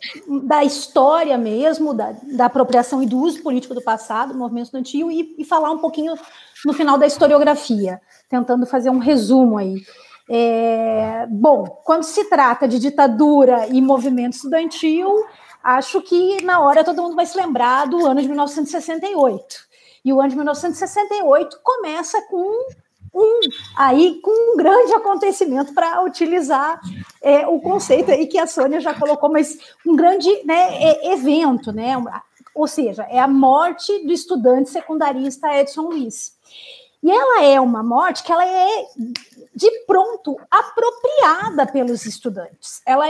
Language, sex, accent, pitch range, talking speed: Portuguese, female, Brazilian, 260-355 Hz, 150 wpm